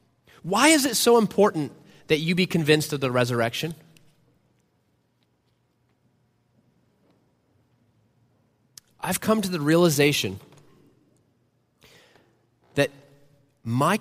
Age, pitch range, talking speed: 30-49, 125-190 Hz, 80 wpm